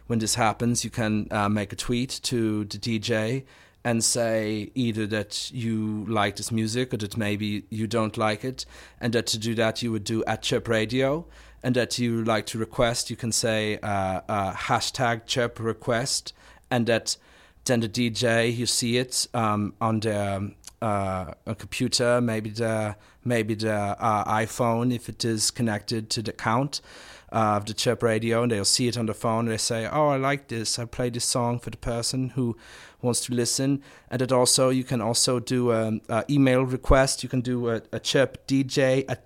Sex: male